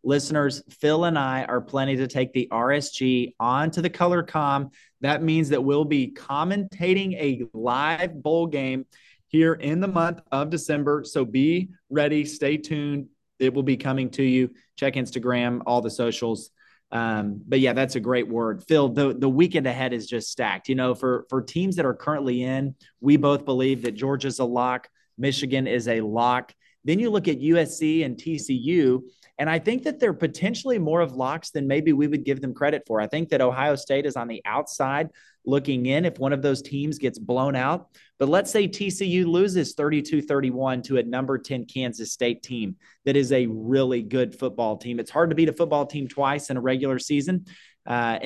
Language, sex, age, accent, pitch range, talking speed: English, male, 30-49, American, 130-155 Hz, 195 wpm